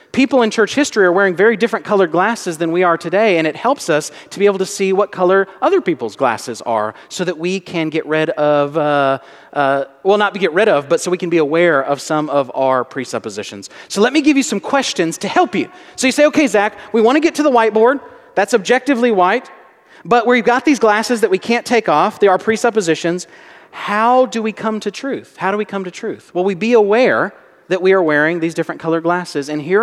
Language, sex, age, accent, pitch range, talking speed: English, male, 40-59, American, 165-225 Hz, 235 wpm